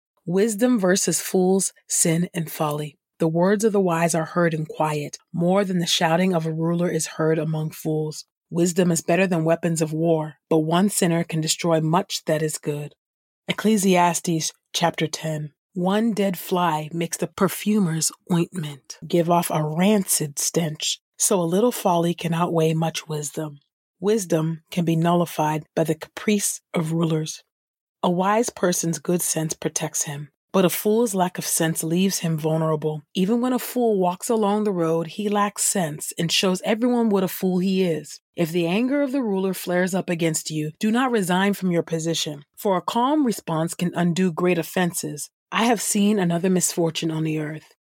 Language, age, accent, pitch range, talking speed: English, 40-59, American, 160-190 Hz, 175 wpm